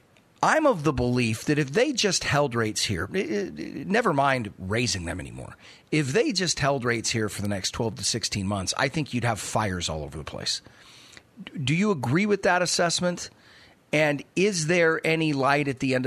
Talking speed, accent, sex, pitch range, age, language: 195 wpm, American, male, 115-155 Hz, 40-59, English